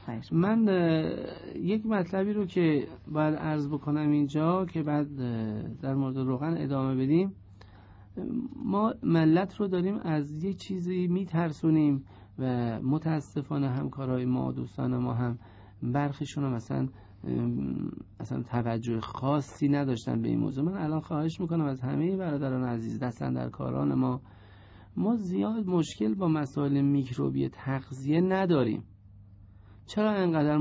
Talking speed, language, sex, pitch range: 125 wpm, Persian, male, 115-175 Hz